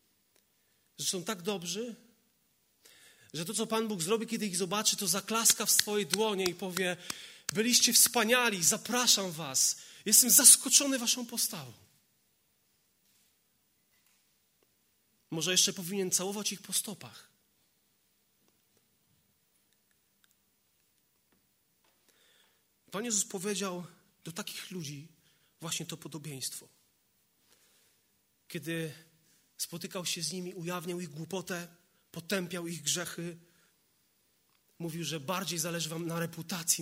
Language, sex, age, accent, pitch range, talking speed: Polish, male, 30-49, native, 165-210 Hz, 100 wpm